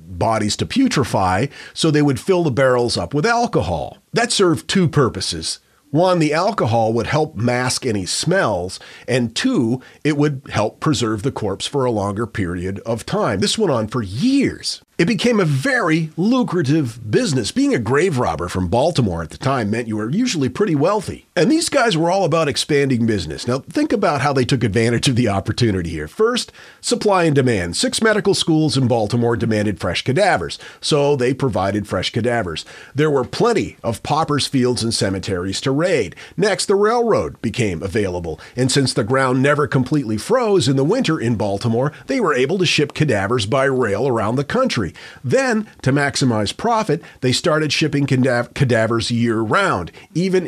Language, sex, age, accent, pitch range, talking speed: English, male, 40-59, American, 115-160 Hz, 175 wpm